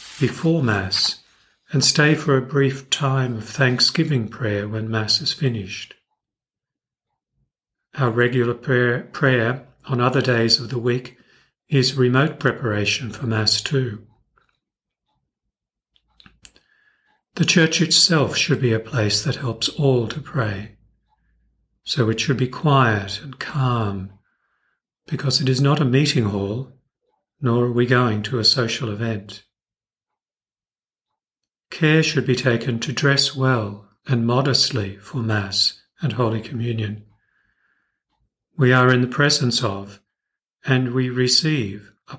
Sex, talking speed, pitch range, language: male, 125 wpm, 110-135 Hz, English